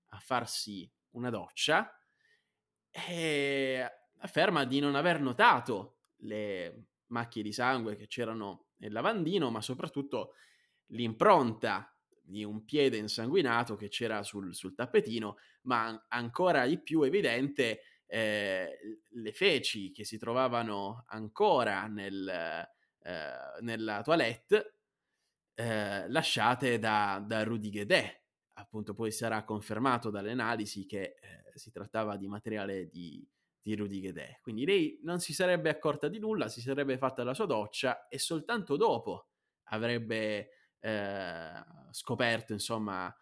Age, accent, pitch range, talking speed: 20-39, native, 105-130 Hz, 120 wpm